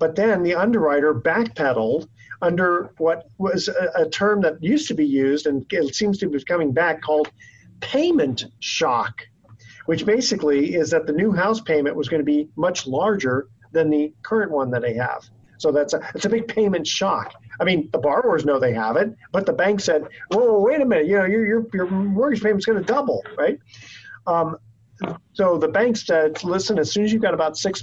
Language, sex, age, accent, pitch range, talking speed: English, male, 40-59, American, 135-185 Hz, 205 wpm